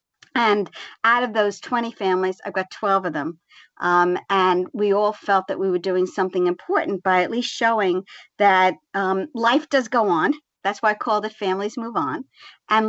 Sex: male